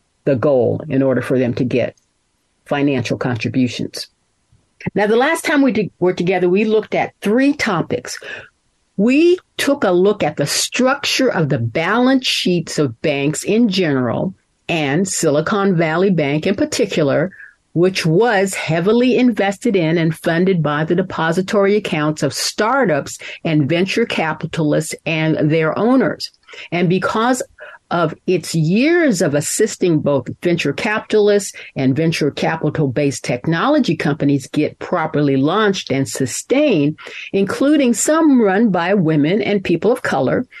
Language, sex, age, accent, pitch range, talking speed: English, female, 50-69, American, 150-215 Hz, 135 wpm